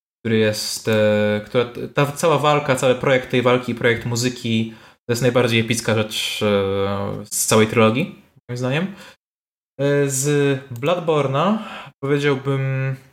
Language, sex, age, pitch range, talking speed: Polish, male, 20-39, 115-145 Hz, 115 wpm